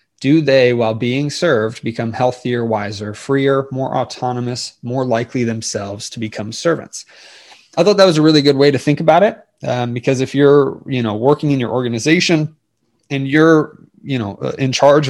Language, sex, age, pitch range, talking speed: English, male, 20-39, 115-140 Hz, 180 wpm